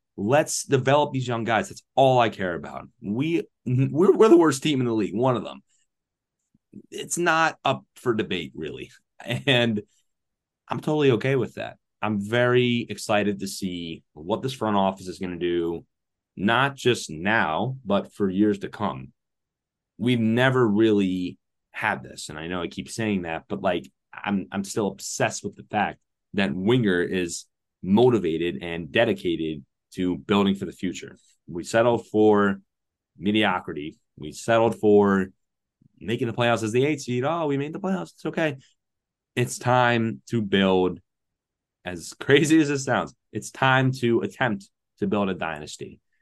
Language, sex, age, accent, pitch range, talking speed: English, male, 30-49, American, 95-130 Hz, 160 wpm